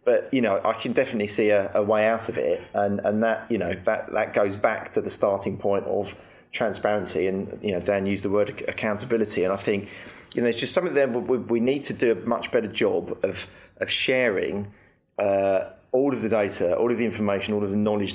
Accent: British